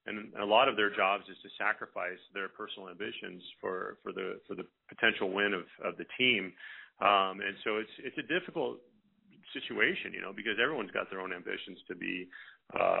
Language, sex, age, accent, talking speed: English, male, 40-59, American, 200 wpm